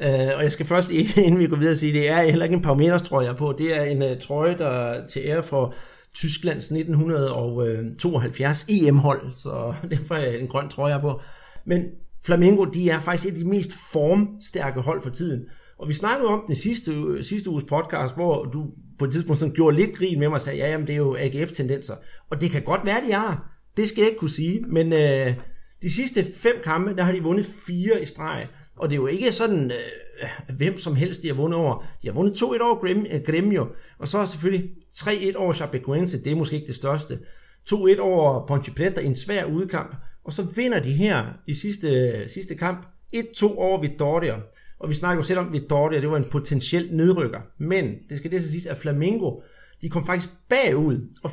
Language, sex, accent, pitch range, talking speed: Danish, male, native, 145-185 Hz, 220 wpm